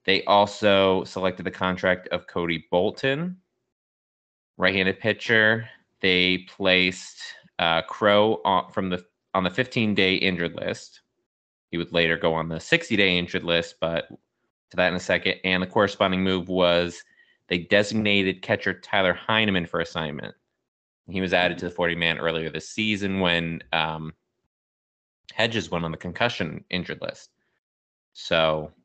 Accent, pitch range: American, 85-105 Hz